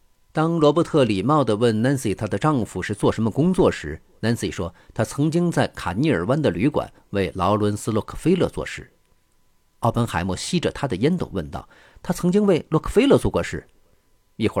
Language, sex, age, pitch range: Chinese, male, 50-69, 95-130 Hz